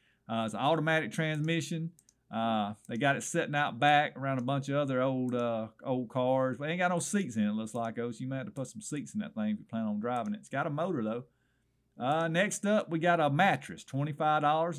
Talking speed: 250 wpm